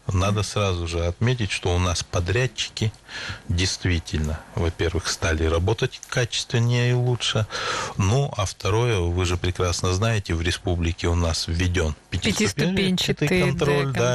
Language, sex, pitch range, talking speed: Russian, male, 90-115 Hz, 125 wpm